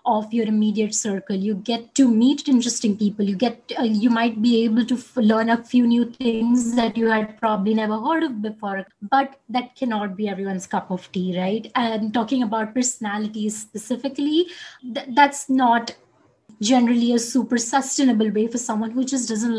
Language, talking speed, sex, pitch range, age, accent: English, 180 wpm, female, 215-255 Hz, 20-39, Indian